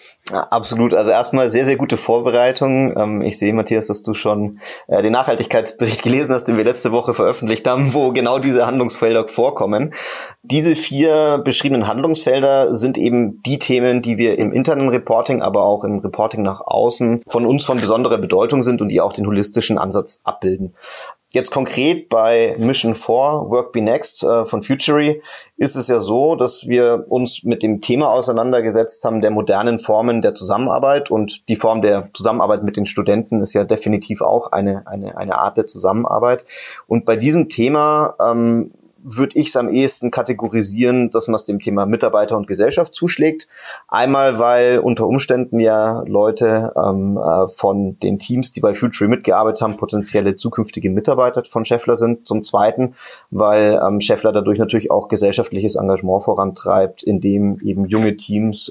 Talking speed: 165 wpm